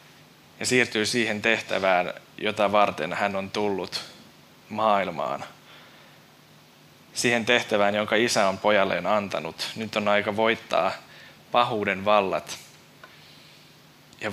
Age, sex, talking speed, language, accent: 20-39, male, 100 wpm, Finnish, native